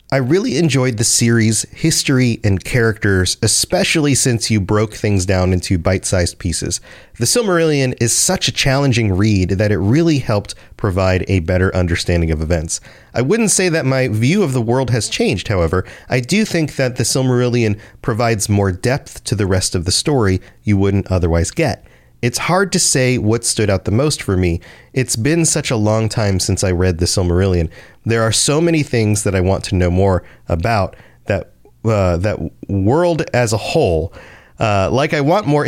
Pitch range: 95-140 Hz